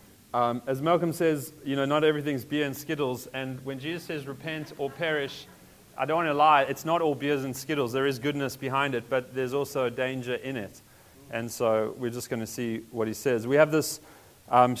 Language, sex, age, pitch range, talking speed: English, male, 30-49, 130-155 Hz, 225 wpm